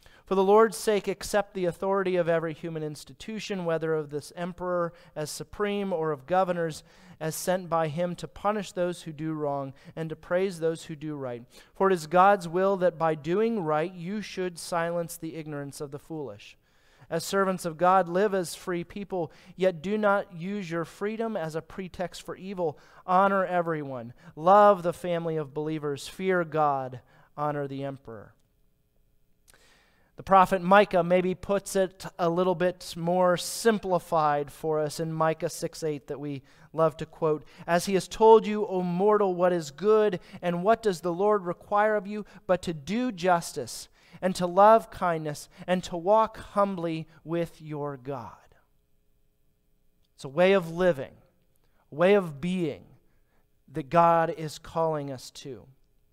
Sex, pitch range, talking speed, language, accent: male, 155-190 Hz, 165 wpm, English, American